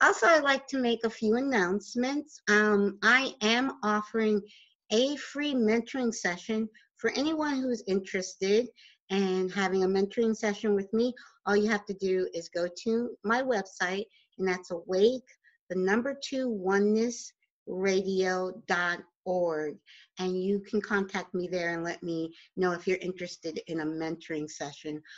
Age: 50-69